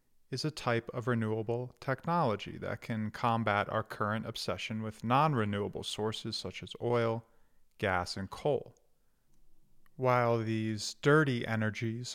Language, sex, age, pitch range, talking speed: English, male, 40-59, 105-130 Hz, 125 wpm